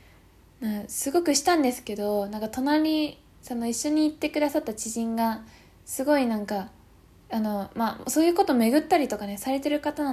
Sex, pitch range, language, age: female, 210-275 Hz, Japanese, 10-29